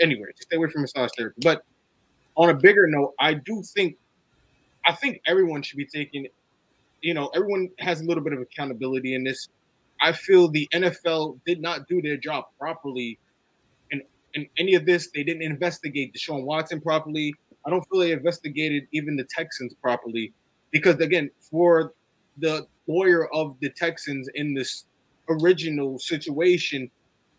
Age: 20-39